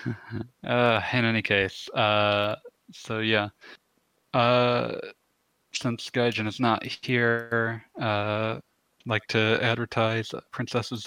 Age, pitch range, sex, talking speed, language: 20-39, 105-120 Hz, male, 100 wpm, English